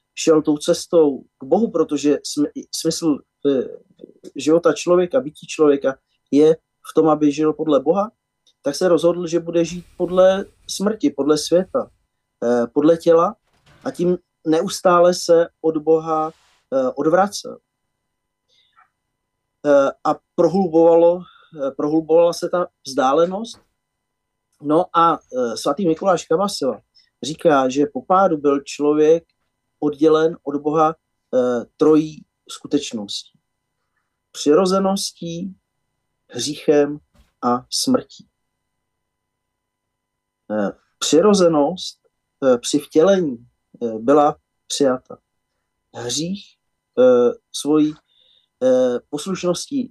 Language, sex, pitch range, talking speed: Slovak, male, 145-180 Hz, 90 wpm